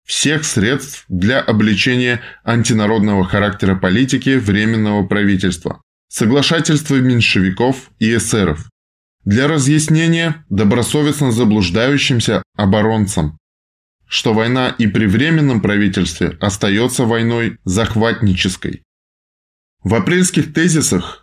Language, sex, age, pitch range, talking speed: Russian, male, 20-39, 100-135 Hz, 85 wpm